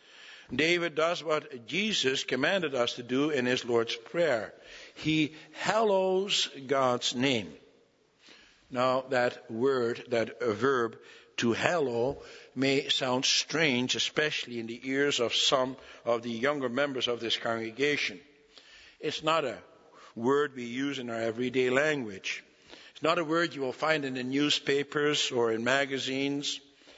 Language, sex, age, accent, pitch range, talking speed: English, male, 60-79, American, 135-195 Hz, 140 wpm